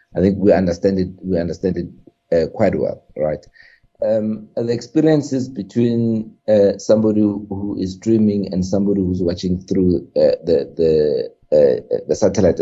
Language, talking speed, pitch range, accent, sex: English, 150 wpm, 90-110 Hz, South African, male